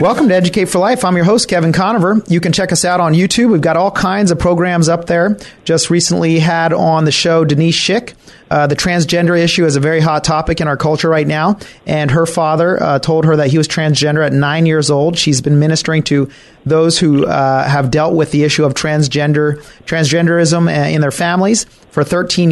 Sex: male